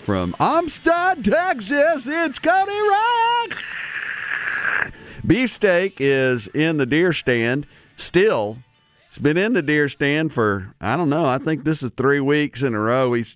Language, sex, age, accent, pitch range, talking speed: English, male, 50-69, American, 105-150 Hz, 150 wpm